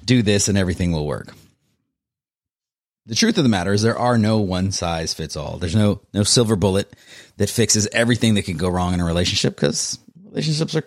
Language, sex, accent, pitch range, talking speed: English, male, American, 90-115 Hz, 205 wpm